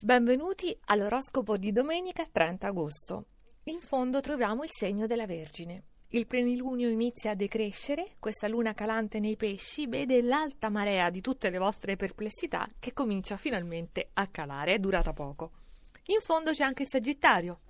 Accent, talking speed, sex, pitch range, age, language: native, 150 wpm, female, 185-265 Hz, 30-49, Italian